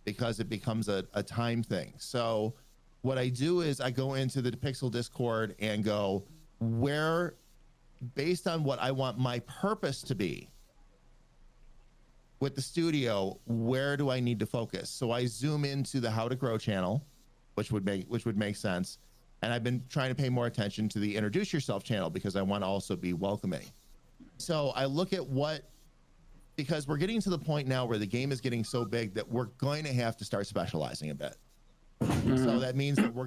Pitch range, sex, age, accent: 110-140 Hz, male, 40-59, American